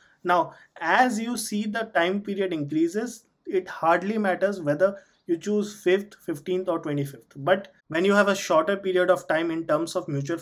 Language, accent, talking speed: English, Indian, 180 wpm